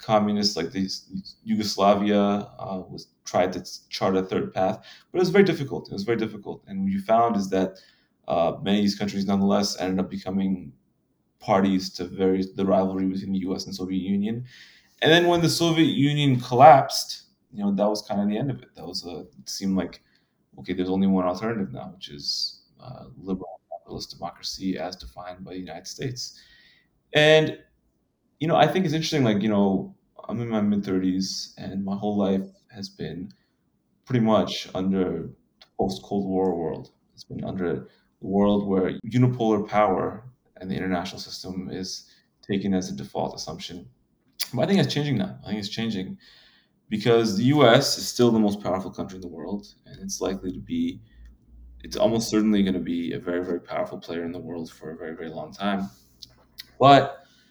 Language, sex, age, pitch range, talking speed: English, male, 20-39, 95-120 Hz, 190 wpm